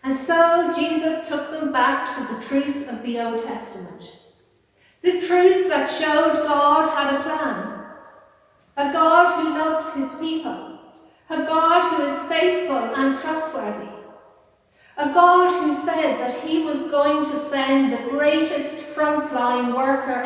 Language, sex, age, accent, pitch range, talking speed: English, female, 40-59, British, 240-310 Hz, 140 wpm